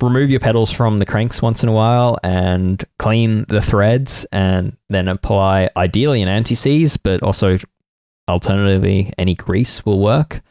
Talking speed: 155 wpm